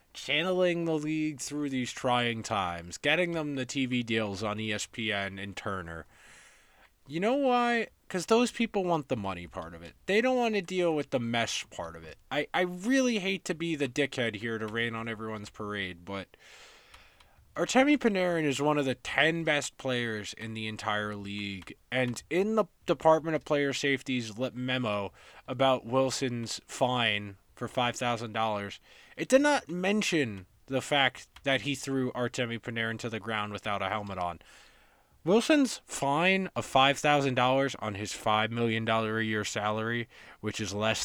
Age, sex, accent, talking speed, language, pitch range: 20-39, male, American, 165 wpm, English, 110-160 Hz